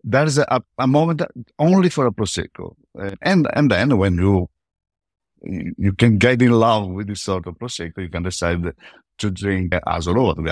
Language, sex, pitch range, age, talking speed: English, male, 90-110 Hz, 50-69, 185 wpm